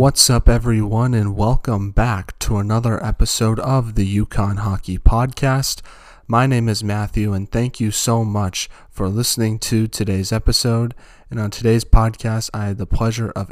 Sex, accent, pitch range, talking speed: male, American, 100-115 Hz, 165 wpm